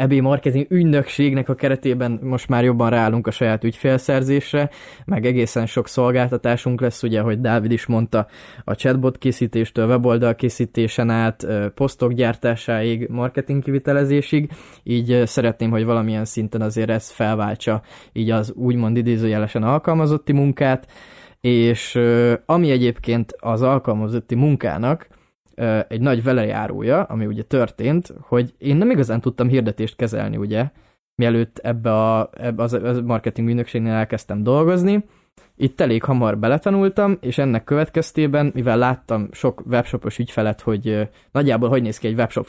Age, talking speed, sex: 20-39, 130 wpm, male